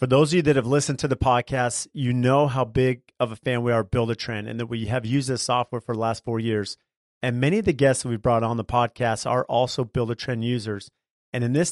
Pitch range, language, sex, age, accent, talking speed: 115-135 Hz, English, male, 40-59, American, 260 wpm